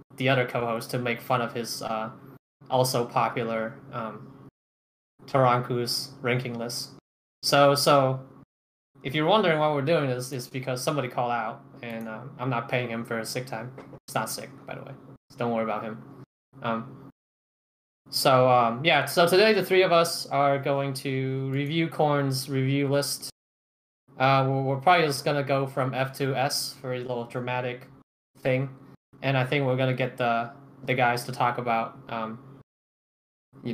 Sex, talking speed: male, 175 wpm